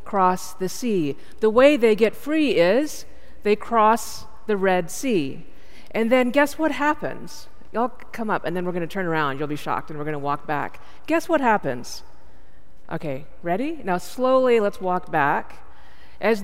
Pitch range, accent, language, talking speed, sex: 165-240 Hz, American, English, 180 wpm, female